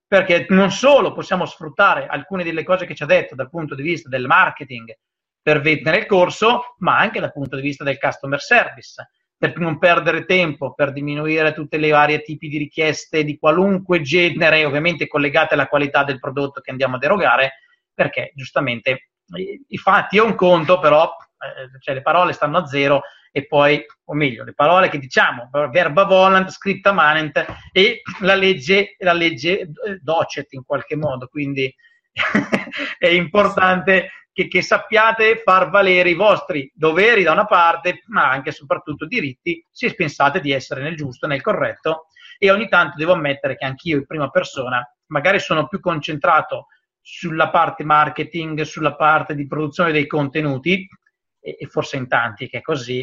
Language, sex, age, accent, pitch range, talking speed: Italian, male, 30-49, native, 145-185 Hz, 165 wpm